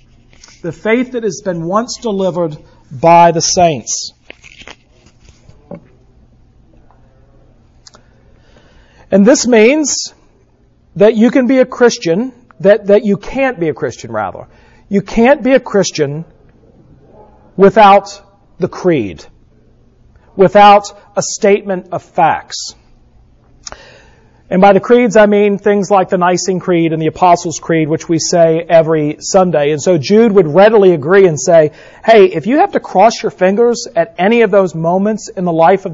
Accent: American